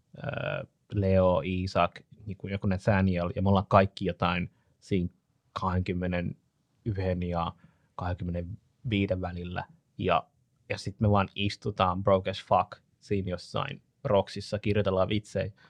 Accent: native